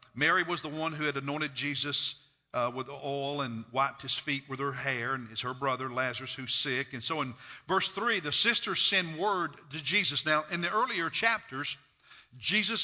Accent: American